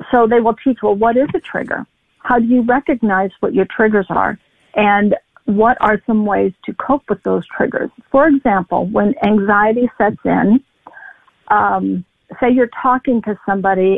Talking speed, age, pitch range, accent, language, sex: 165 wpm, 50-69, 205-245 Hz, American, English, female